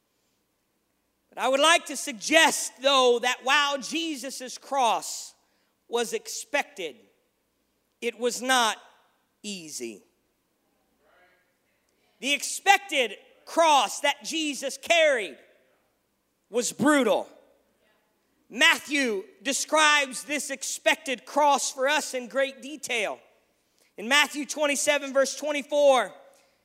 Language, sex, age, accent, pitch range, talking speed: English, male, 40-59, American, 255-300 Hz, 90 wpm